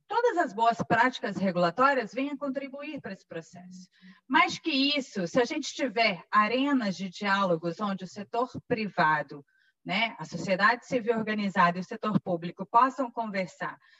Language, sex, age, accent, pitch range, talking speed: Portuguese, female, 30-49, Brazilian, 190-270 Hz, 150 wpm